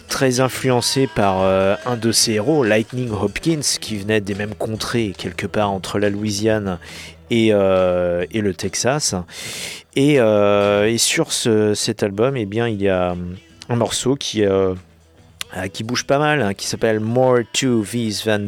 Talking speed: 175 wpm